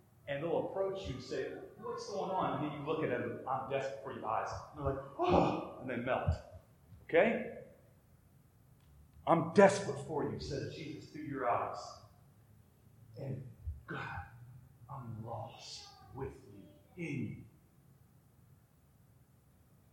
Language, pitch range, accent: English, 120-145 Hz, American